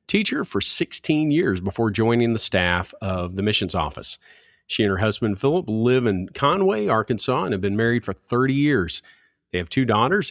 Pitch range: 105-135 Hz